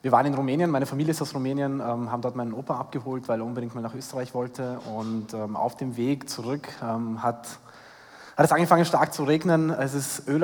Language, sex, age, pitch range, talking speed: English, male, 20-39, 130-150 Hz, 205 wpm